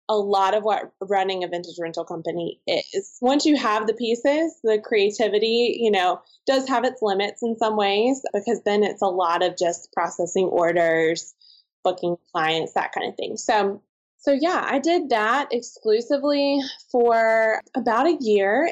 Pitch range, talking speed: 195-235 Hz, 165 wpm